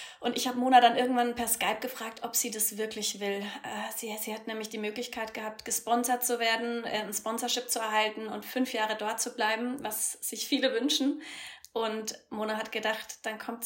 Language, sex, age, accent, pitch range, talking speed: German, female, 30-49, German, 215-250 Hz, 195 wpm